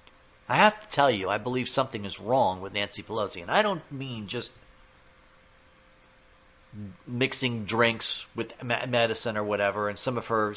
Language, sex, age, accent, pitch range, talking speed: English, male, 50-69, American, 105-150 Hz, 160 wpm